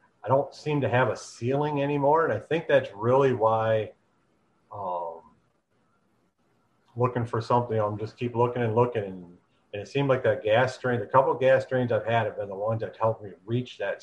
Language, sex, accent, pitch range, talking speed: English, male, American, 110-140 Hz, 205 wpm